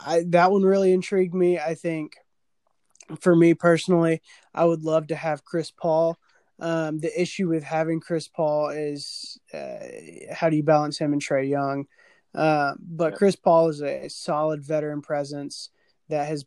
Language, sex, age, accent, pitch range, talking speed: English, male, 20-39, American, 150-175 Hz, 170 wpm